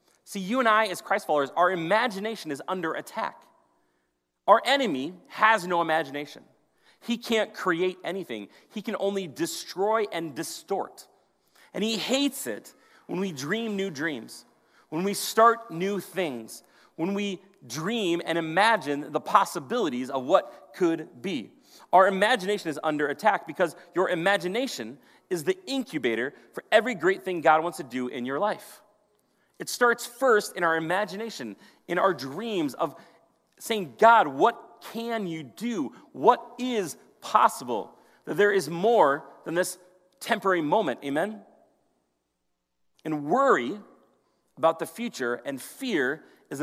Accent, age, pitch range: American, 30-49, 155-220 Hz